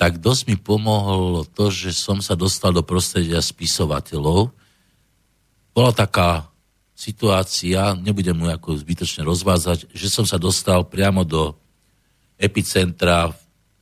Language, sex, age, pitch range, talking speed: English, male, 50-69, 85-100 Hz, 115 wpm